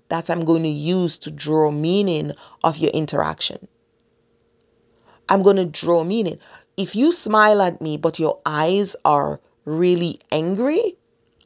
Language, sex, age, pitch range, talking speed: English, female, 30-49, 155-195 Hz, 140 wpm